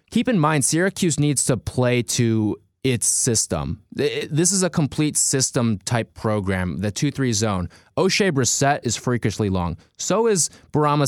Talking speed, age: 145 wpm, 20-39